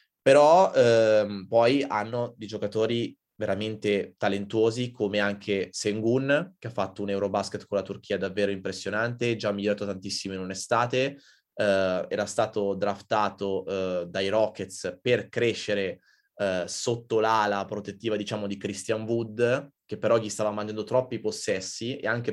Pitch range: 100-115 Hz